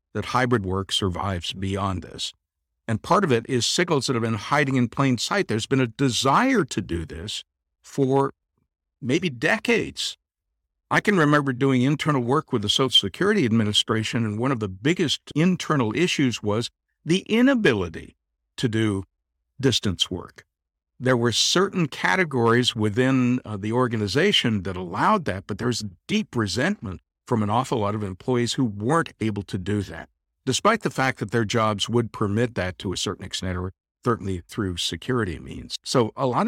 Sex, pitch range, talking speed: male, 100-135 Hz, 170 wpm